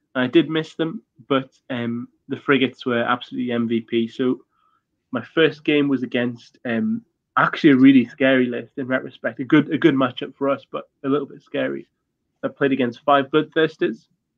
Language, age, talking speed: English, 20-39, 175 wpm